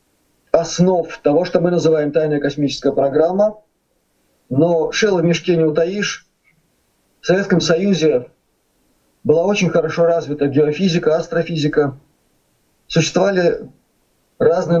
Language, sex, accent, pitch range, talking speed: Russian, male, native, 150-180 Hz, 100 wpm